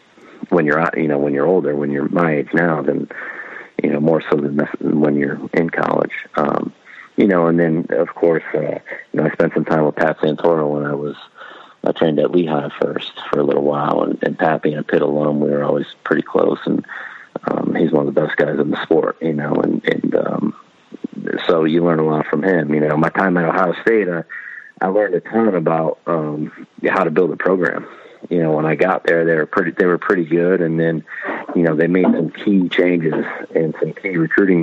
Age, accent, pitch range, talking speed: 40-59, American, 75-85 Hz, 225 wpm